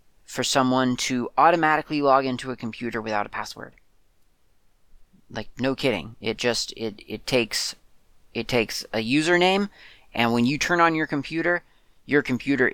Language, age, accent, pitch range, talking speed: English, 30-49, American, 110-140 Hz, 150 wpm